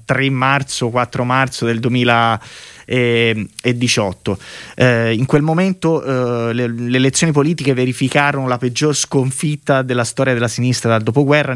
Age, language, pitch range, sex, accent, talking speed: 30-49, Italian, 120-150 Hz, male, native, 130 wpm